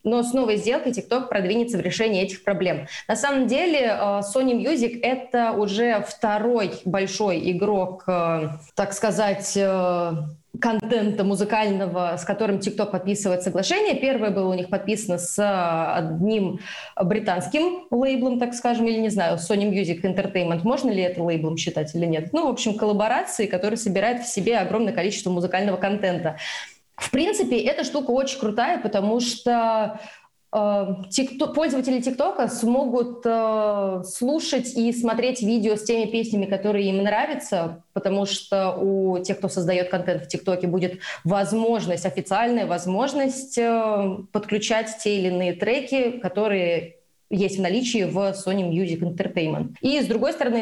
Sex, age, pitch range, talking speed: female, 20-39, 185-235 Hz, 140 wpm